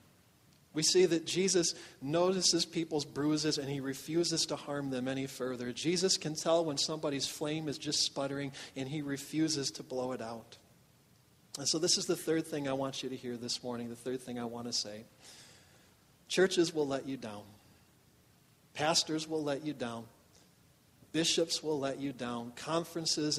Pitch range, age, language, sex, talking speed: 130-155 Hz, 40-59, English, male, 175 wpm